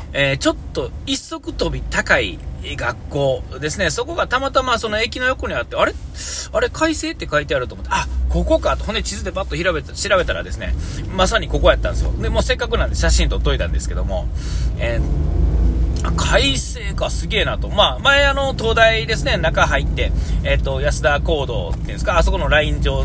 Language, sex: Japanese, male